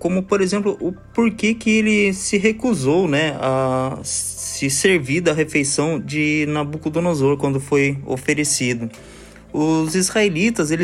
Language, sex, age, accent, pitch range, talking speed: Portuguese, male, 20-39, Brazilian, 130-175 Hz, 120 wpm